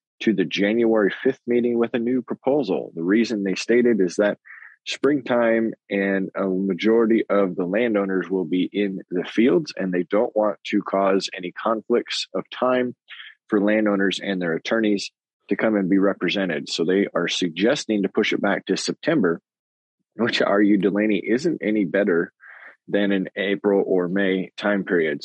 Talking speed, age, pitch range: 170 wpm, 20-39, 95-110 Hz